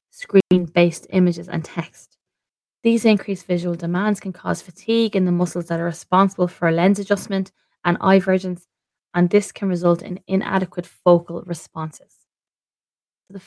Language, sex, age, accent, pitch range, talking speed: English, female, 20-39, Irish, 170-200 Hz, 145 wpm